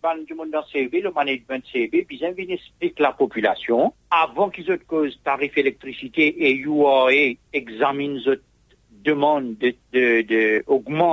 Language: English